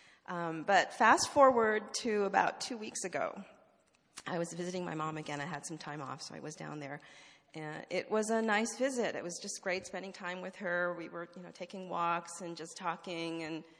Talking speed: 215 wpm